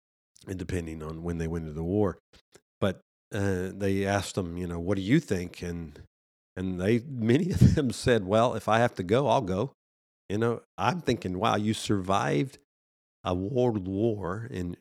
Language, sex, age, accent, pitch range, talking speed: English, male, 50-69, American, 90-115 Hz, 180 wpm